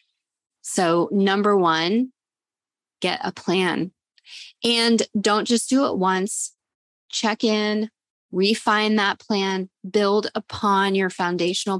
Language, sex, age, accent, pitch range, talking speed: English, female, 20-39, American, 180-225 Hz, 105 wpm